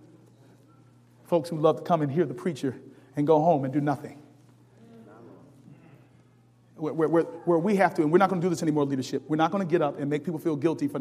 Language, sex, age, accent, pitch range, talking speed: English, male, 40-59, American, 120-175 Hz, 230 wpm